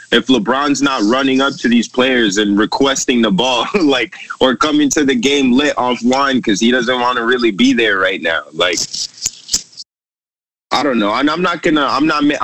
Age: 20-39